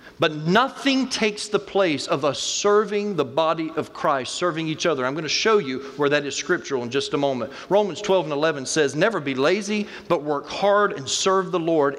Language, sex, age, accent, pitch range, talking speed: English, male, 40-59, American, 150-205 Hz, 215 wpm